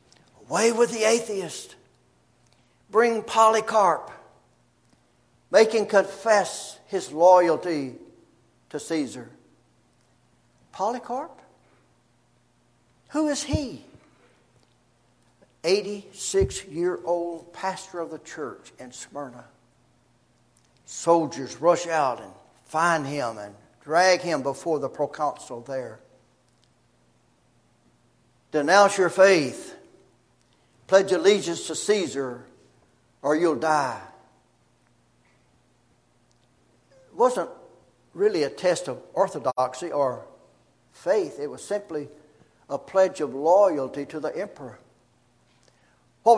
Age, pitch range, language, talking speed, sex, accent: 60-79, 145-205 Hz, English, 90 wpm, male, American